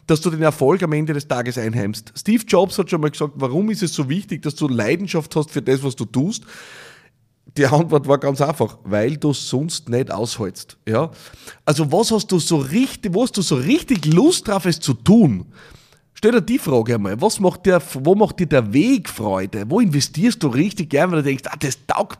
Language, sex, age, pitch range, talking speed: German, male, 30-49, 125-170 Hz, 220 wpm